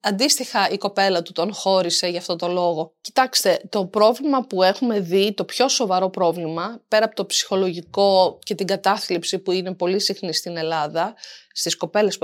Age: 30-49